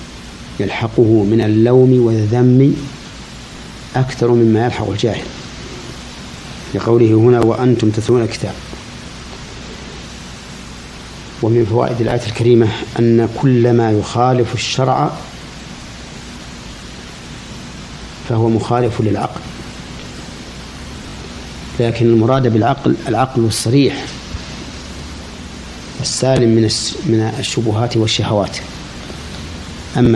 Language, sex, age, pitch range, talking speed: Arabic, male, 50-69, 95-120 Hz, 70 wpm